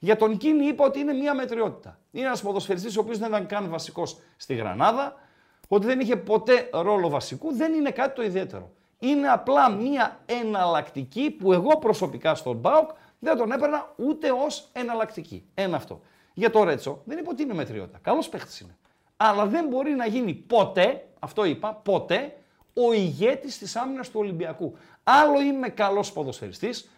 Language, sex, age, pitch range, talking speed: Greek, male, 50-69, 180-260 Hz, 170 wpm